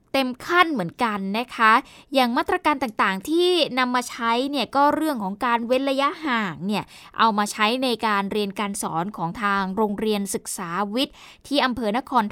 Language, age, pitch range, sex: Thai, 10-29, 210-270 Hz, female